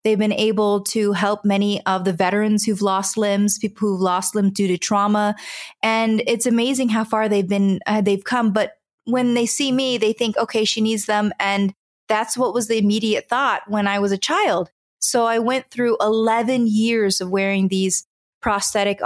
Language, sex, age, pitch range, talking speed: English, female, 20-39, 205-235 Hz, 195 wpm